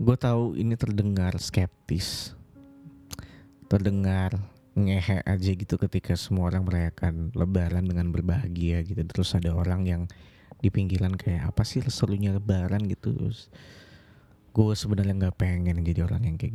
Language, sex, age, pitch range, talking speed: Indonesian, male, 20-39, 90-110 Hz, 135 wpm